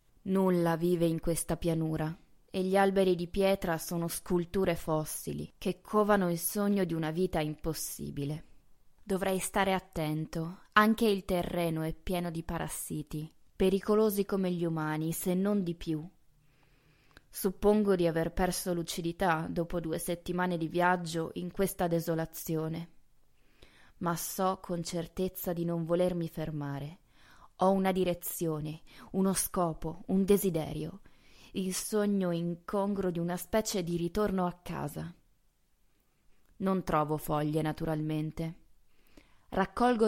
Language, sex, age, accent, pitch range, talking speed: Italian, female, 20-39, native, 160-195 Hz, 120 wpm